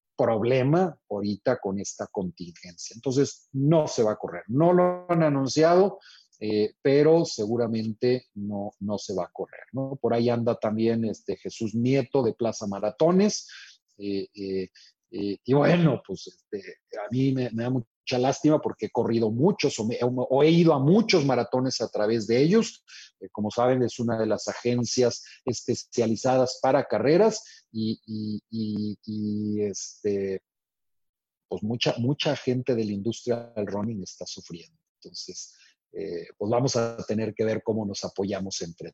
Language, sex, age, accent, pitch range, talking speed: Spanish, male, 40-59, Mexican, 115-170 Hz, 160 wpm